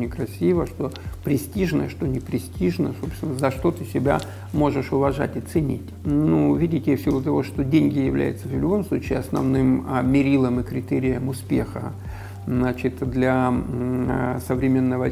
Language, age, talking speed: Russian, 50-69, 125 wpm